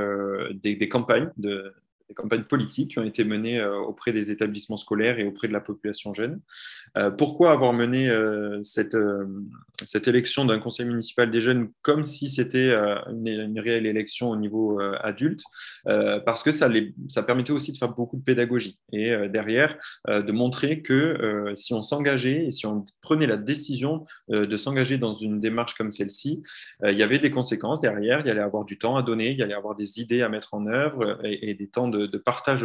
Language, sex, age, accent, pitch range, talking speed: French, male, 20-39, French, 105-125 Hz, 215 wpm